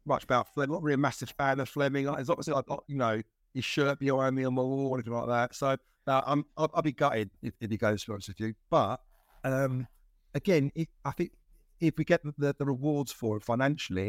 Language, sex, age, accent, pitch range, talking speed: English, male, 50-69, British, 115-140 Hz, 245 wpm